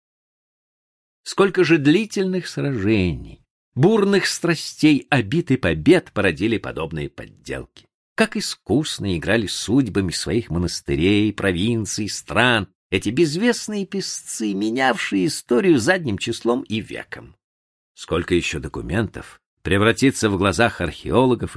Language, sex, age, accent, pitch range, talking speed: Russian, male, 50-69, native, 90-140 Hz, 100 wpm